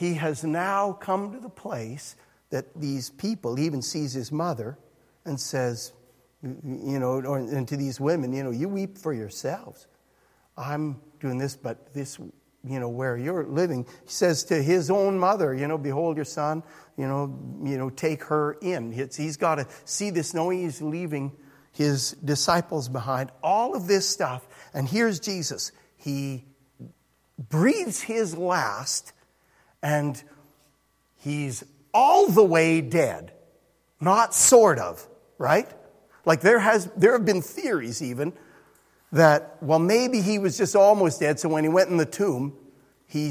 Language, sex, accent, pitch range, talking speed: English, male, American, 140-190 Hz, 155 wpm